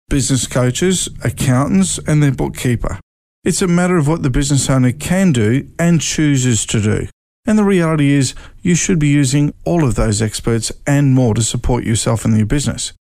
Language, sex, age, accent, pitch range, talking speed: English, male, 50-69, Australian, 115-145 Hz, 180 wpm